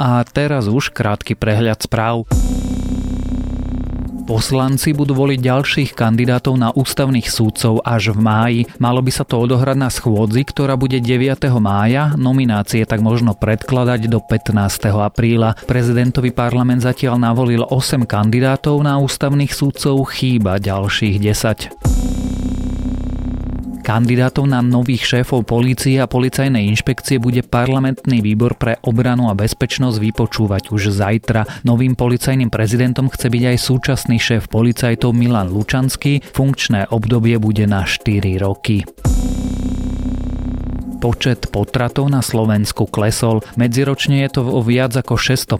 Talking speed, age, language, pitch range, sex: 125 wpm, 30-49, Slovak, 105-130 Hz, male